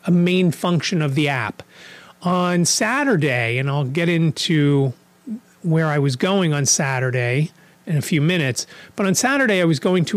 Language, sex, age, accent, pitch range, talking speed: English, male, 30-49, American, 145-190 Hz, 170 wpm